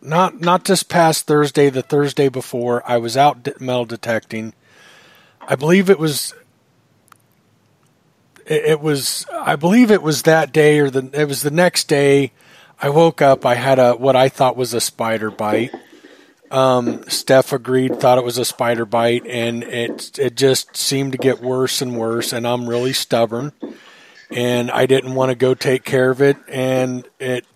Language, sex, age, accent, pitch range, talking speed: English, male, 40-59, American, 120-150 Hz, 175 wpm